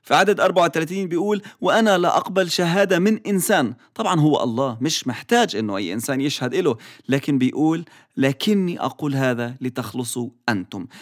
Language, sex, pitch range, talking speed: English, male, 125-190 Hz, 140 wpm